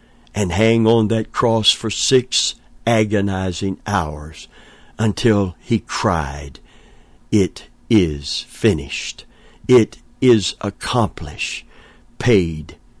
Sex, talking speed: male, 90 wpm